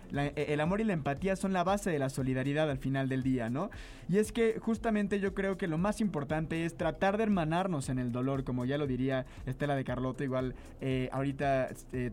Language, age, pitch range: English, 20-39, 140-195 Hz